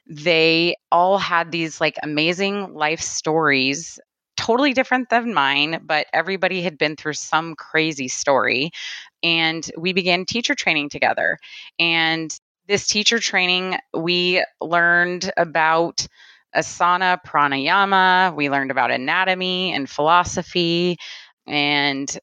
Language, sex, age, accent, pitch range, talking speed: English, female, 20-39, American, 150-180 Hz, 115 wpm